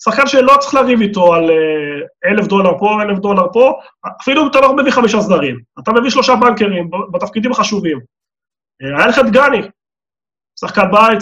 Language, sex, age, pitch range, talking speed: Hebrew, male, 20-39, 175-225 Hz, 155 wpm